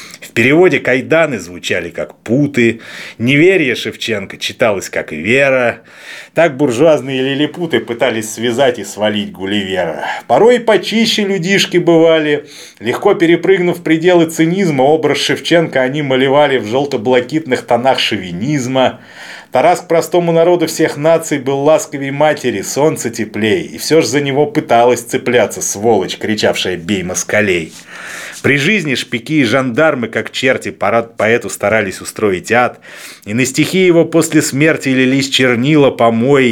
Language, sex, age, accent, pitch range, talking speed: Russian, male, 30-49, native, 120-155 Hz, 130 wpm